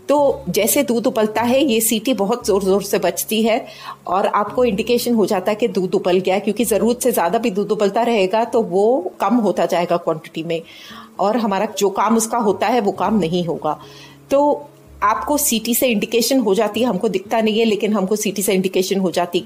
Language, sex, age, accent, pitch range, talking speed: Hindi, female, 30-49, native, 180-235 Hz, 210 wpm